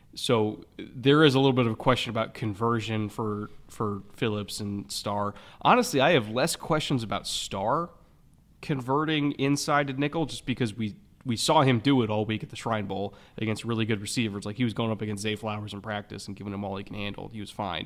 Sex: male